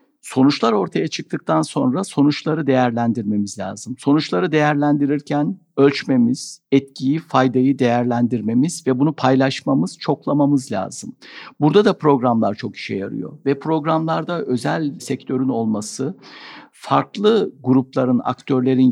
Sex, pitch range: male, 120-155 Hz